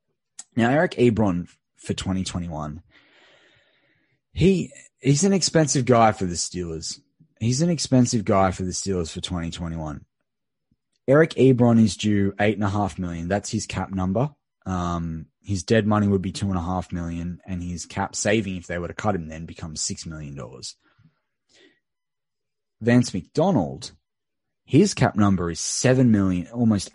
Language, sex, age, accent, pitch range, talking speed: English, male, 20-39, Australian, 90-105 Hz, 155 wpm